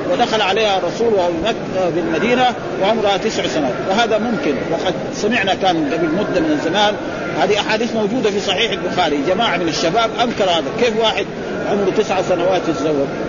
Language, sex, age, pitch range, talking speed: Arabic, male, 40-59, 195-255 Hz, 150 wpm